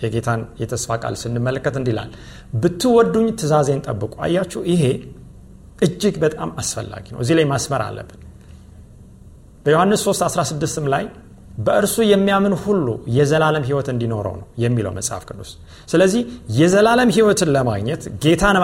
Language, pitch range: Amharic, 120-200 Hz